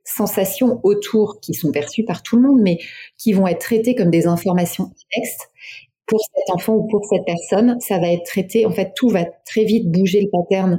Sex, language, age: female, French, 30-49